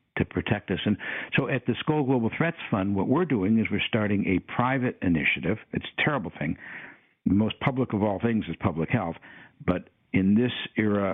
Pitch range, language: 90-115 Hz, English